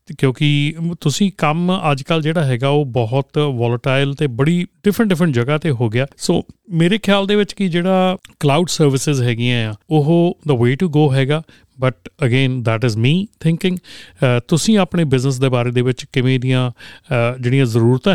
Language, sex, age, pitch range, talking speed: Punjabi, male, 40-59, 125-150 Hz, 170 wpm